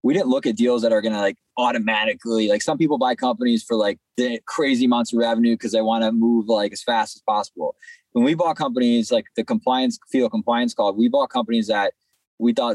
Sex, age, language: male, 20-39, English